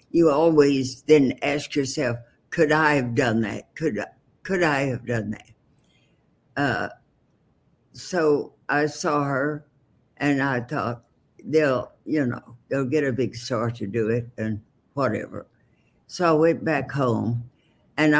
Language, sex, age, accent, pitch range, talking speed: English, female, 60-79, American, 120-155 Hz, 140 wpm